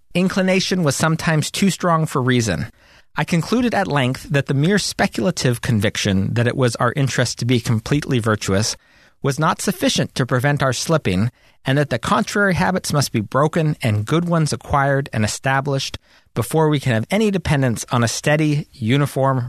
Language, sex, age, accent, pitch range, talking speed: English, male, 40-59, American, 120-155 Hz, 170 wpm